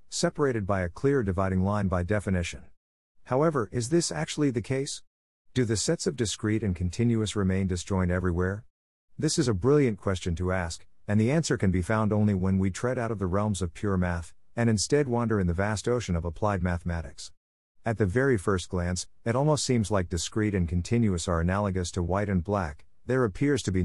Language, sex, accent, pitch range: English, male, American, 90-120 Hz